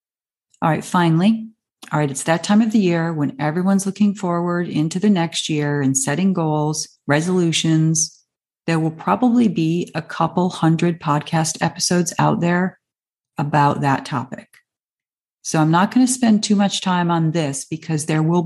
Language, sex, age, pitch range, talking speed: English, female, 40-59, 155-200 Hz, 165 wpm